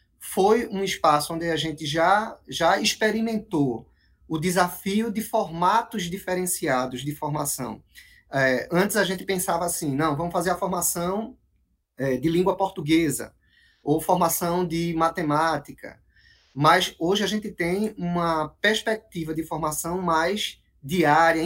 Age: 20-39